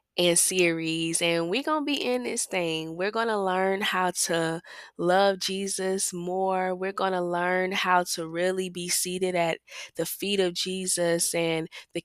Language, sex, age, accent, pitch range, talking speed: English, female, 20-39, American, 170-200 Hz, 175 wpm